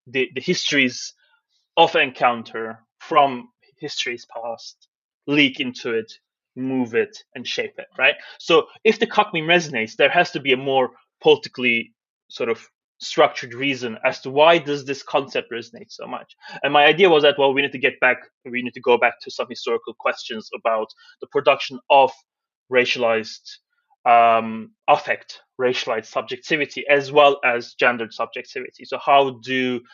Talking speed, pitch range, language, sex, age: 160 wpm, 120-175 Hz, English, male, 20-39